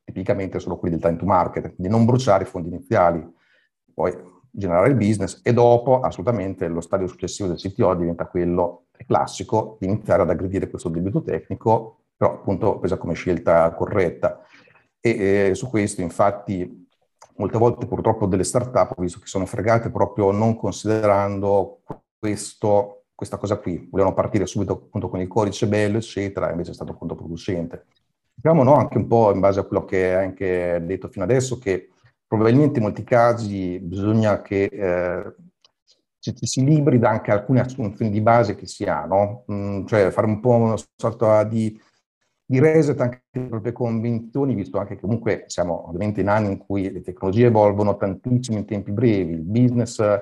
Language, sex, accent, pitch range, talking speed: Italian, male, native, 95-115 Hz, 175 wpm